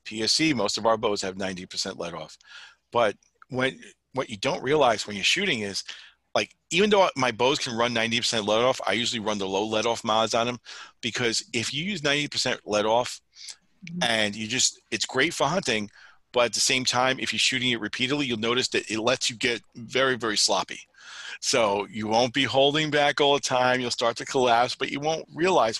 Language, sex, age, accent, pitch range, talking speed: English, male, 40-59, American, 110-135 Hz, 215 wpm